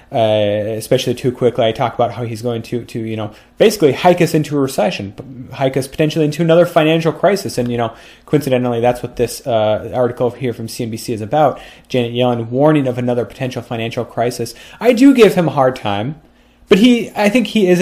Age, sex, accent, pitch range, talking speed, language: 30-49, male, American, 120-160 Hz, 210 wpm, English